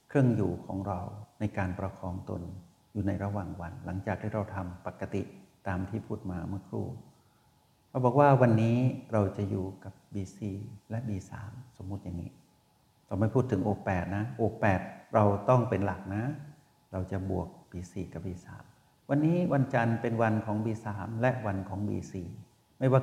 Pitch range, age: 95-115 Hz, 60-79